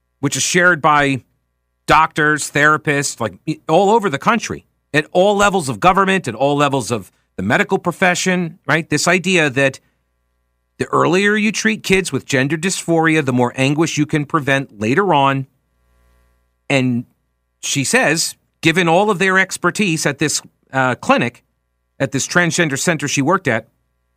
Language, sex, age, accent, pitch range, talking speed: English, male, 40-59, American, 120-175 Hz, 155 wpm